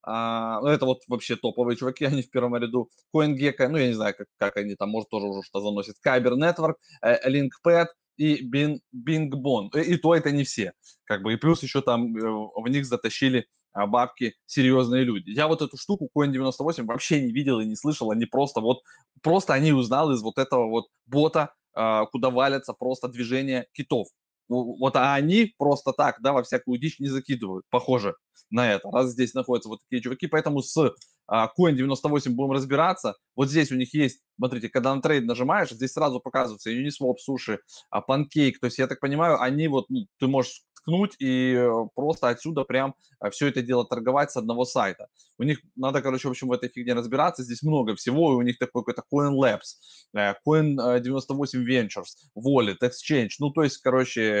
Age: 20-39